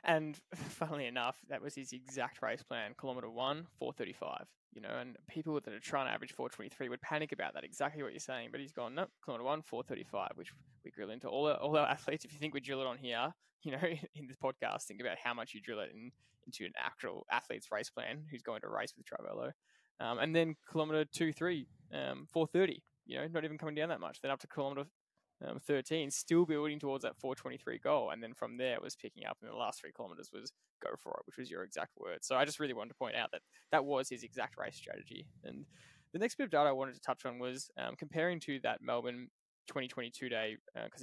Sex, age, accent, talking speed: male, 10-29, Australian, 240 wpm